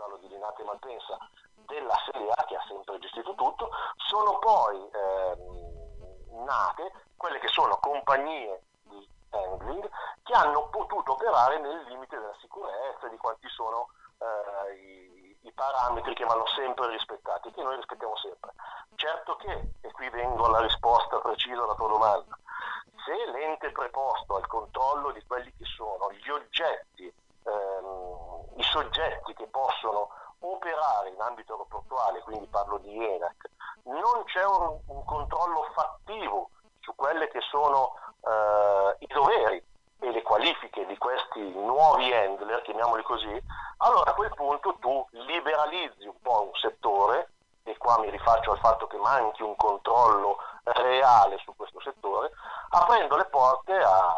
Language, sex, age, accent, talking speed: Italian, male, 40-59, native, 140 wpm